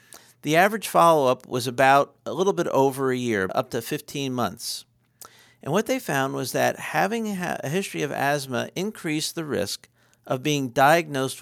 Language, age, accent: English, 50-69, American